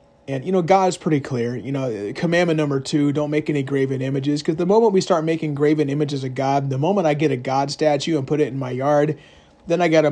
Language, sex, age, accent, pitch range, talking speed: English, male, 30-49, American, 135-160 Hz, 260 wpm